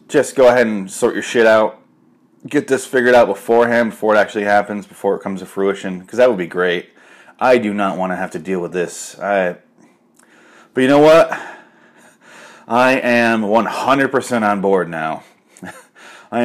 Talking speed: 180 wpm